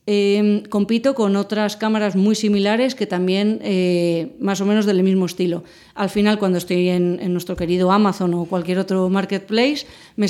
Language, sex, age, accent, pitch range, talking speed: Spanish, female, 30-49, Spanish, 185-220 Hz, 175 wpm